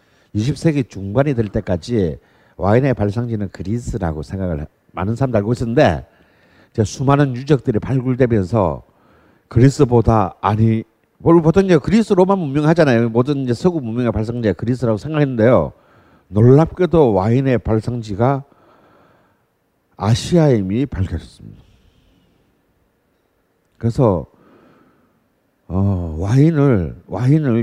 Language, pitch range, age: Korean, 100-140 Hz, 50-69